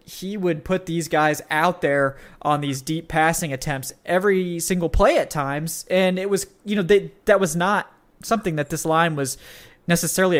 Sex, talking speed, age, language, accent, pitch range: male, 185 wpm, 20-39, English, American, 140-175 Hz